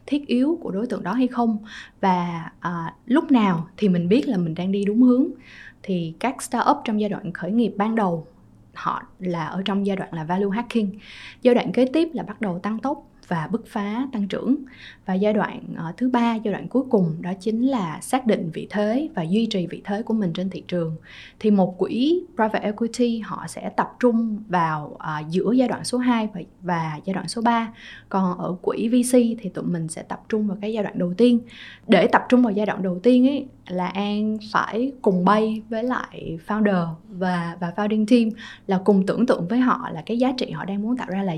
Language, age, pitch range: Vietnamese, 20-39, 185-245 Hz